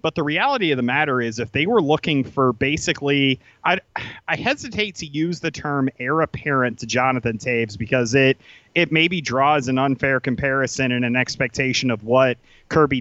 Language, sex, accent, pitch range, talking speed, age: English, male, American, 130-170 Hz, 180 wpm, 30-49